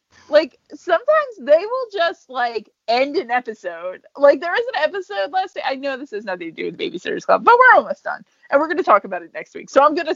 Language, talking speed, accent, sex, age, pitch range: English, 250 wpm, American, female, 30-49, 200-330 Hz